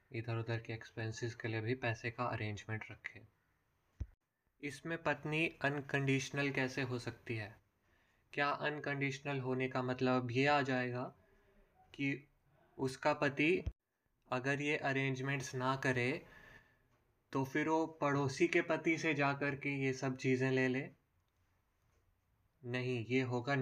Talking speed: 135 wpm